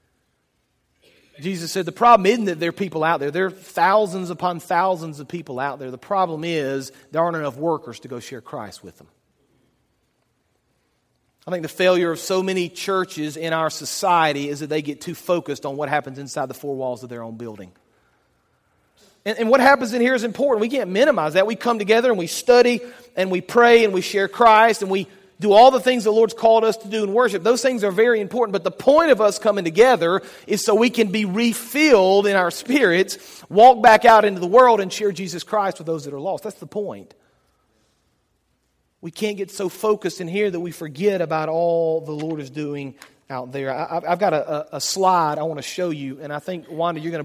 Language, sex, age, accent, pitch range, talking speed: English, male, 40-59, American, 155-210 Hz, 220 wpm